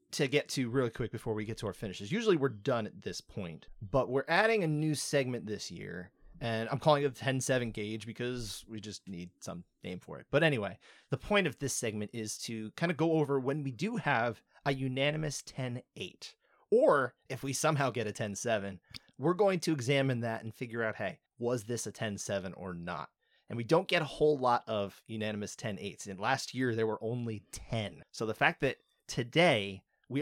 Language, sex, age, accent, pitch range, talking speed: English, male, 30-49, American, 105-140 Hz, 220 wpm